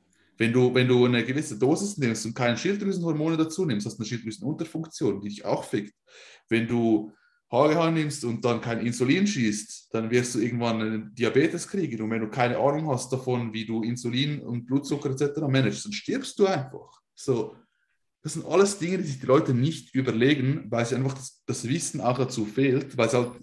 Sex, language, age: male, German, 20-39